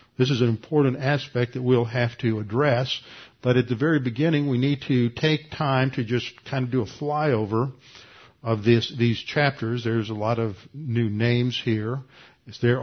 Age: 50-69